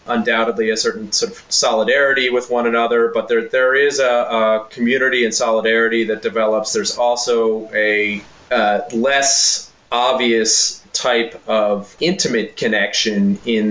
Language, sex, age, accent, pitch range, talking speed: English, male, 30-49, American, 105-120 Hz, 135 wpm